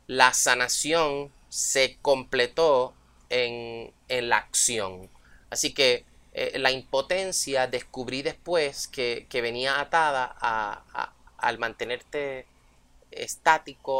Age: 30-49